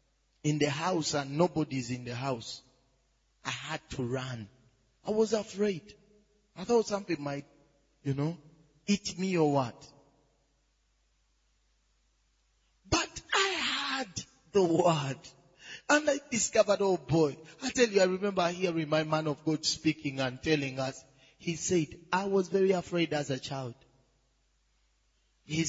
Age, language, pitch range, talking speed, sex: 30-49, English, 140-210 Hz, 140 wpm, male